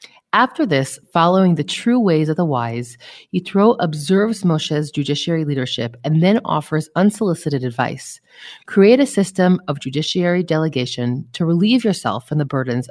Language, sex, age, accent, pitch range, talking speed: English, female, 30-49, American, 135-180 Hz, 145 wpm